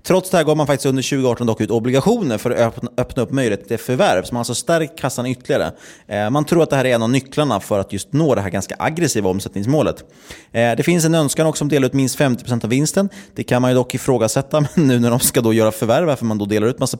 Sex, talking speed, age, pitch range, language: male, 270 wpm, 30-49, 100-135 Hz, Swedish